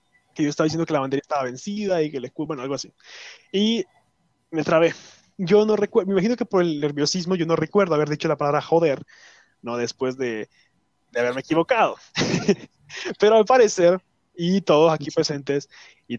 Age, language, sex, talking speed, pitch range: 20-39, Spanish, male, 180 wpm, 140-190 Hz